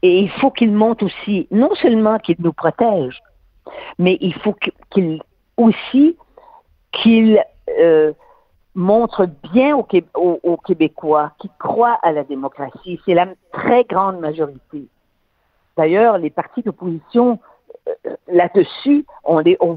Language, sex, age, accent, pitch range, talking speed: French, female, 50-69, French, 155-220 Hz, 120 wpm